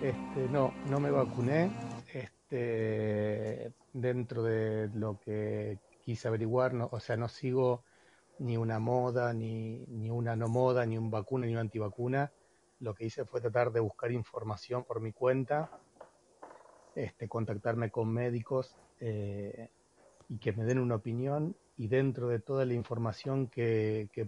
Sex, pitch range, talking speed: male, 115-140 Hz, 150 wpm